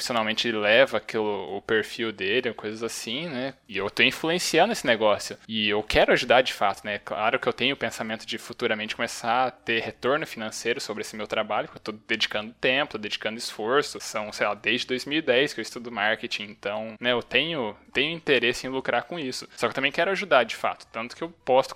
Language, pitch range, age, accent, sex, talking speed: Portuguese, 110-145 Hz, 10-29, Brazilian, male, 210 wpm